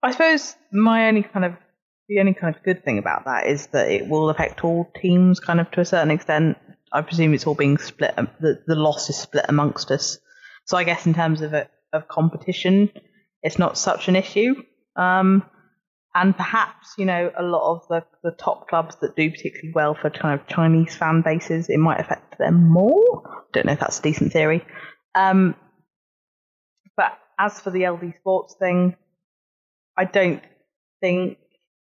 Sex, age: female, 20-39